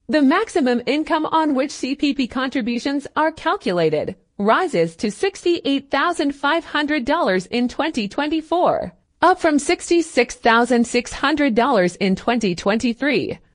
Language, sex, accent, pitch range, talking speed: English, female, American, 230-305 Hz, 85 wpm